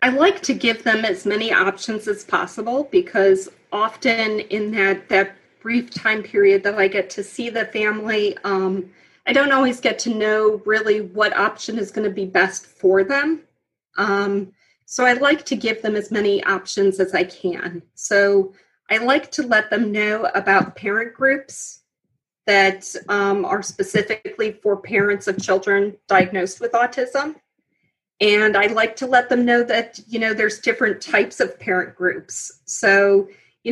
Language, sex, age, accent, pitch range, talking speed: English, female, 30-49, American, 195-235 Hz, 165 wpm